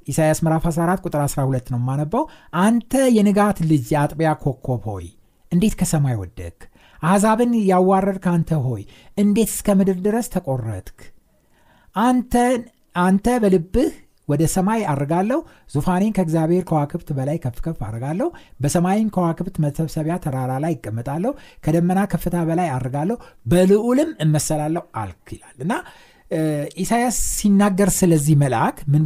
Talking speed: 115 wpm